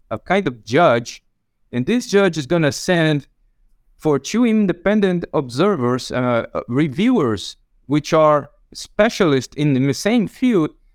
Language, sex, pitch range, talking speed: English, male, 130-185 Hz, 125 wpm